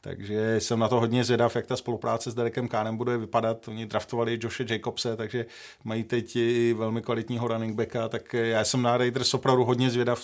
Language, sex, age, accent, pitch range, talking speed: Czech, male, 40-59, native, 115-120 Hz, 200 wpm